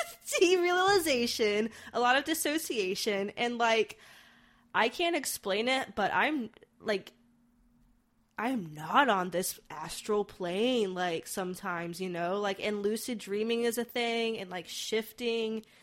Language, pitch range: English, 180-230 Hz